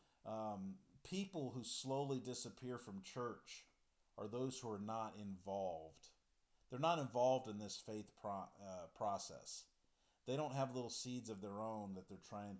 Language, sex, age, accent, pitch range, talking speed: English, male, 50-69, American, 95-125 Hz, 155 wpm